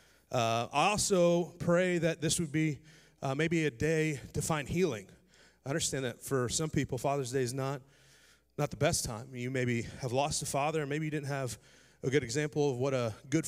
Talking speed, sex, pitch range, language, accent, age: 210 wpm, male, 125-155 Hz, English, American, 30-49